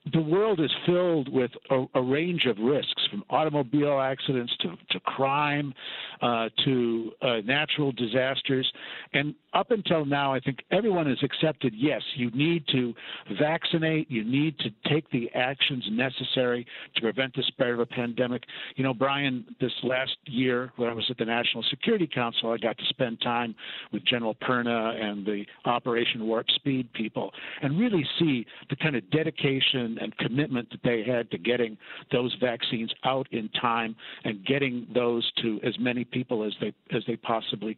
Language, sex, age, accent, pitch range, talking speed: English, male, 60-79, American, 120-145 Hz, 170 wpm